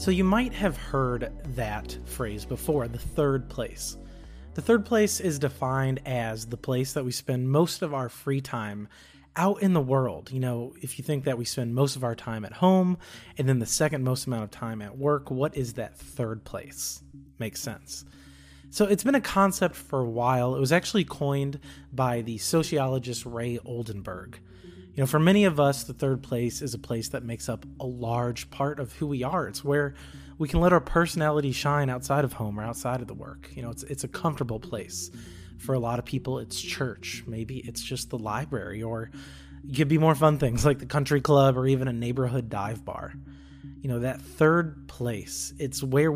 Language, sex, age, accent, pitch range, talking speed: English, male, 20-39, American, 110-140 Hz, 210 wpm